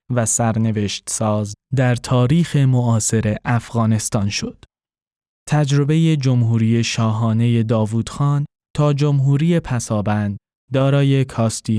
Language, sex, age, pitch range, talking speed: Persian, male, 10-29, 110-135 Hz, 90 wpm